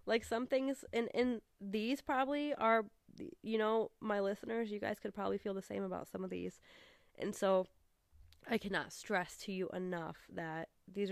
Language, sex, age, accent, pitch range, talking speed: English, female, 20-39, American, 180-215 Hz, 185 wpm